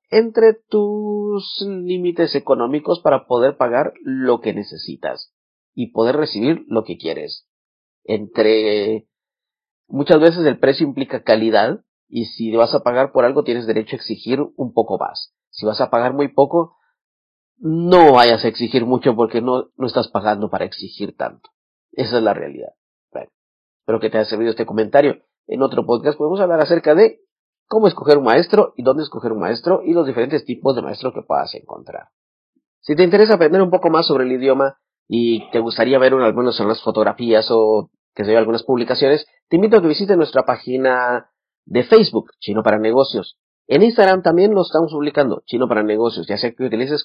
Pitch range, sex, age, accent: 115-160 Hz, male, 40-59, Mexican